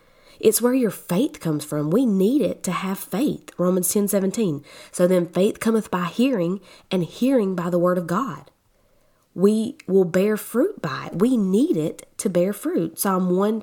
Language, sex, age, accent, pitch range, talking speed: English, female, 20-39, American, 165-215 Hz, 185 wpm